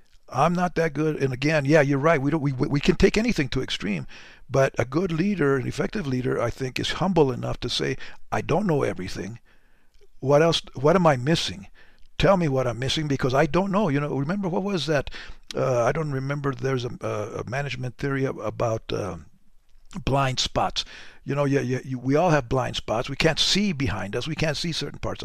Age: 60-79